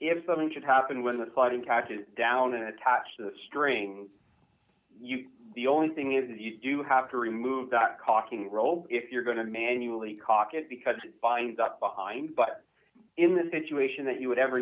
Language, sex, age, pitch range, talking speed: English, male, 30-49, 120-150 Hz, 195 wpm